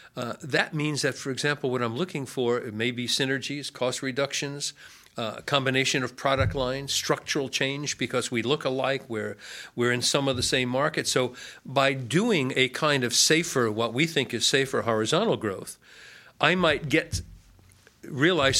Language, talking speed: English, 170 wpm